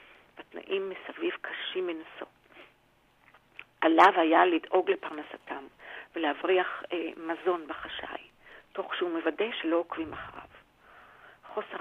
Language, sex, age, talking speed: Hebrew, female, 40-59, 95 wpm